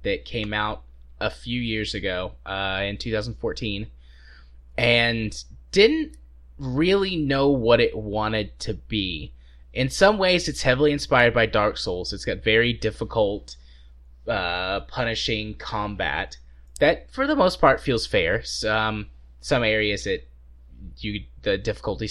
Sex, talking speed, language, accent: male, 135 wpm, English, American